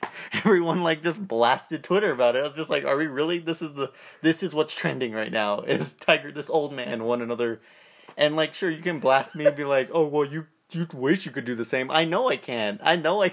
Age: 20-39